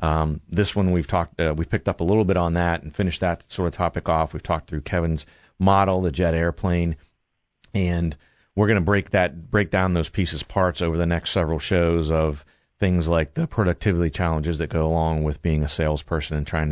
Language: English